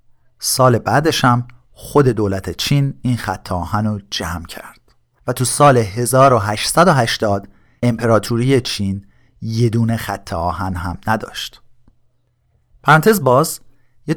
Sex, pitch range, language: male, 105-130 Hz, Persian